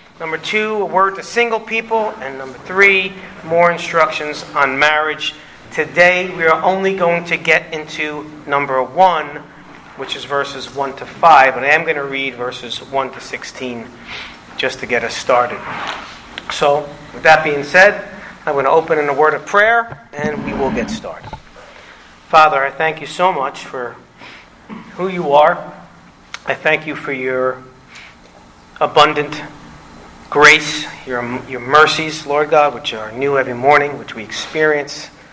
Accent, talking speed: American, 160 wpm